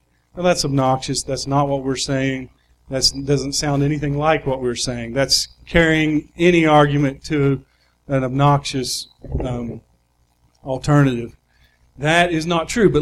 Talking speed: 140 wpm